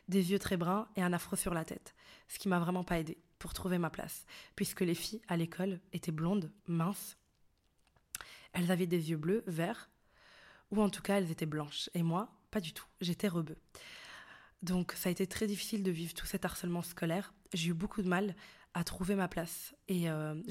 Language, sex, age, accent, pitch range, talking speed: French, female, 20-39, French, 175-200 Hz, 210 wpm